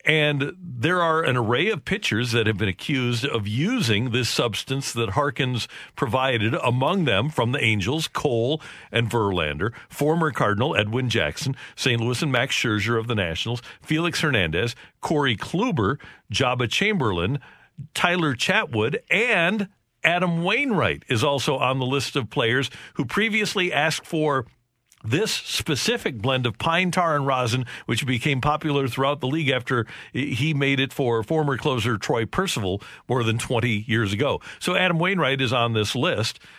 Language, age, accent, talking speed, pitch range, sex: English, 50-69, American, 155 wpm, 115-150 Hz, male